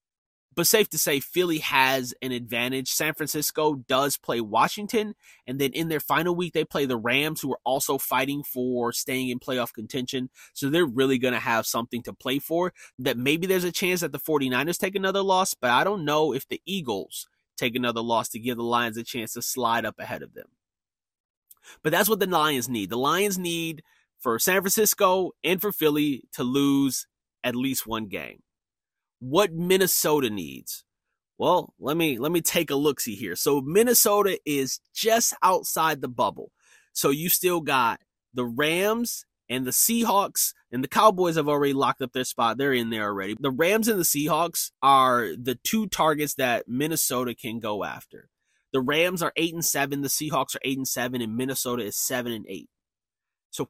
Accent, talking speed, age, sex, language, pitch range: American, 190 wpm, 30-49, male, English, 125-175 Hz